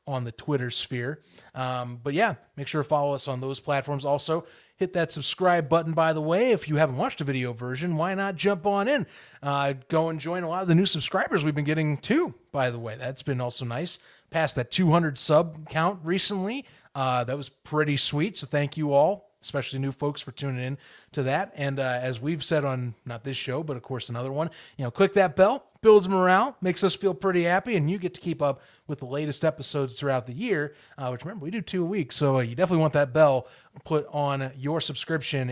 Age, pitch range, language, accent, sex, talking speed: 30-49, 130-180 Hz, English, American, male, 230 wpm